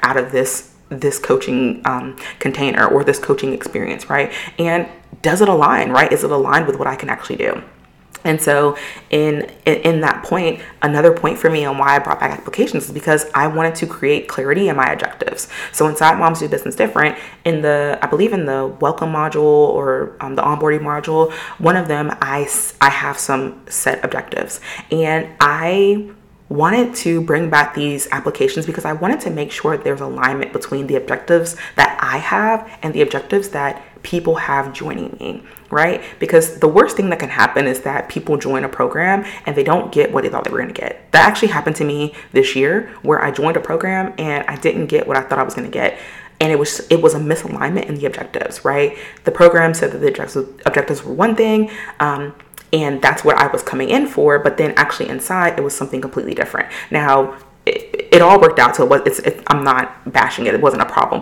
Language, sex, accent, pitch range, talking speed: English, female, American, 145-215 Hz, 210 wpm